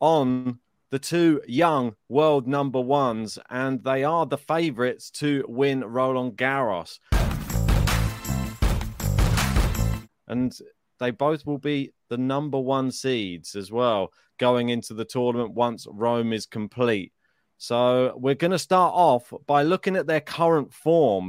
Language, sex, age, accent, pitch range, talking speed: English, male, 30-49, British, 125-160 Hz, 130 wpm